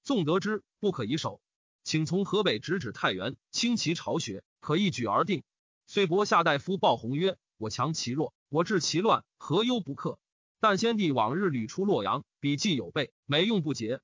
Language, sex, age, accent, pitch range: Chinese, male, 30-49, native, 145-215 Hz